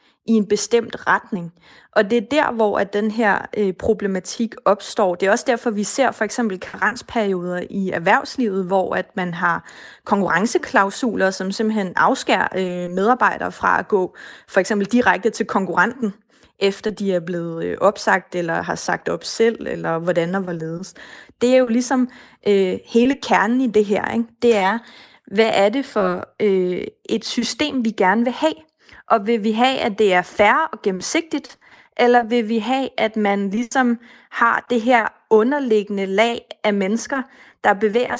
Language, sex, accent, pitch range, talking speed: Danish, female, native, 200-240 Hz, 170 wpm